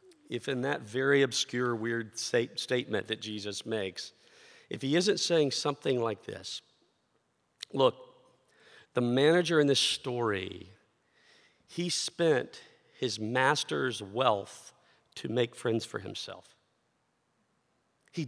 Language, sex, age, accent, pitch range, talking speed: English, male, 50-69, American, 115-165 Hz, 110 wpm